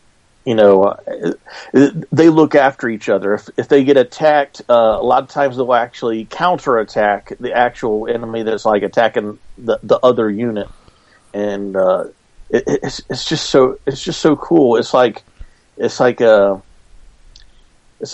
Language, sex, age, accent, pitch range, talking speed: English, male, 40-59, American, 105-135 Hz, 155 wpm